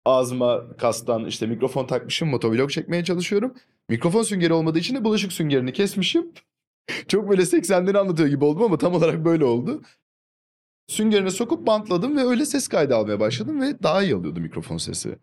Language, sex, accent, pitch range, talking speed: Turkish, male, native, 125-200 Hz, 165 wpm